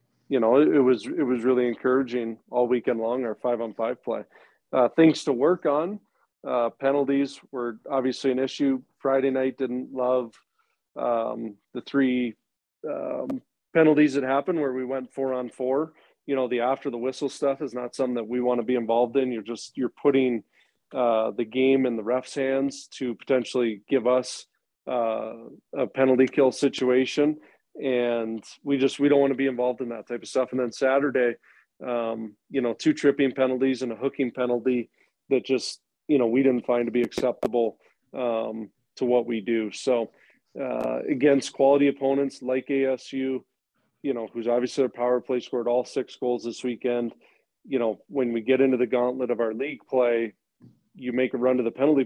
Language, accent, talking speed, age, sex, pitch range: English, American, 185 wpm, 40-59, male, 120-135 Hz